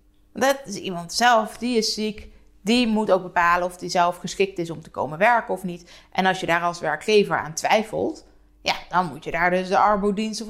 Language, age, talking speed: Dutch, 20-39, 215 wpm